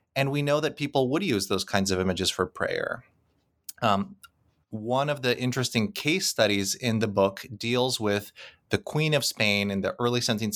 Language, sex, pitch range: English, male, 100-130 Hz